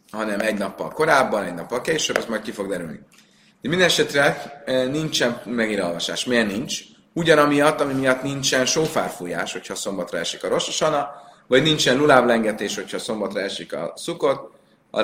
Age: 30-49